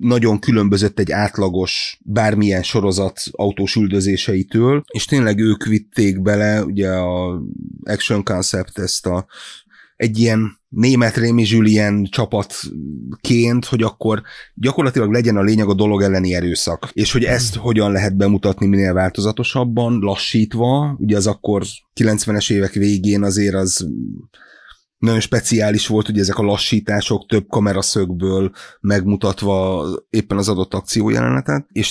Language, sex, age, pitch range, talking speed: Hungarian, male, 30-49, 95-115 Hz, 130 wpm